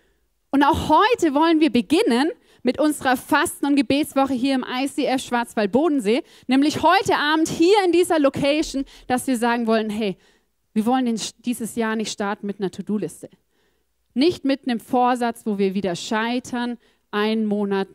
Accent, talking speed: German, 155 wpm